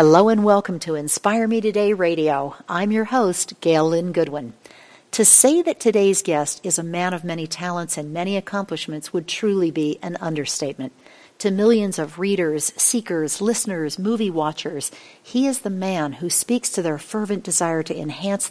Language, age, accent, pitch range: English, 50-69, American, 160-210 Hz